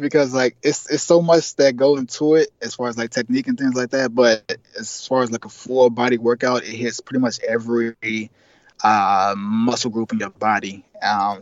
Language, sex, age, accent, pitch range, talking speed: English, male, 20-39, American, 110-130 Hz, 210 wpm